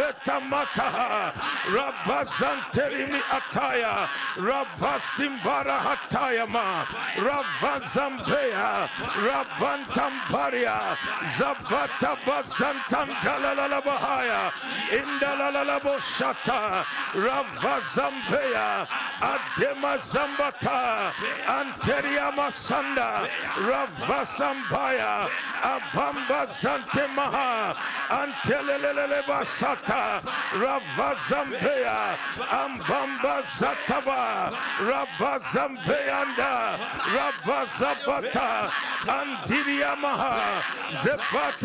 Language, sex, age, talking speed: English, male, 60-79, 45 wpm